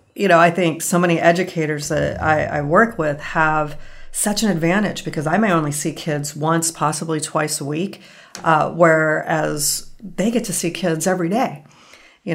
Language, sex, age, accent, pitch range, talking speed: English, female, 40-59, American, 150-175 Hz, 180 wpm